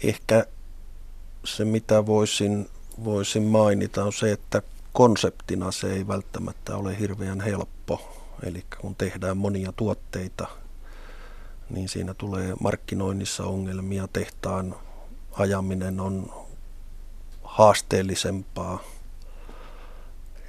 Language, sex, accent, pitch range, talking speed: Finnish, male, native, 90-100 Hz, 90 wpm